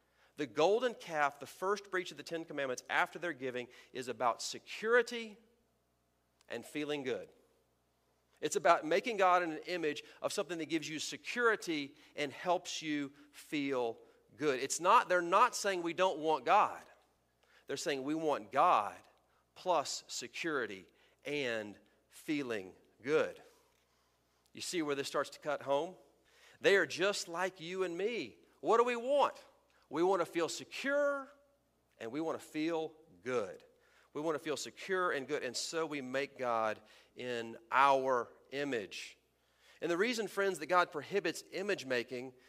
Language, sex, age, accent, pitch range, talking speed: English, male, 40-59, American, 145-230 Hz, 155 wpm